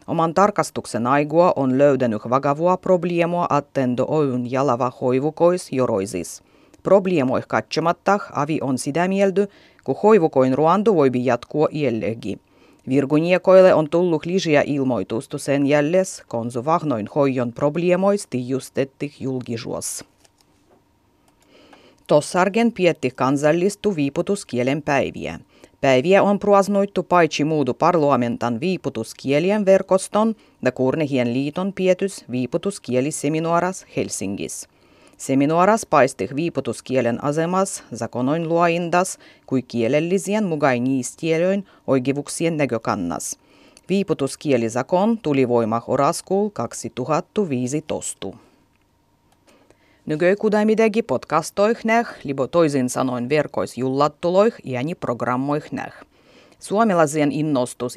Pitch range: 130-185 Hz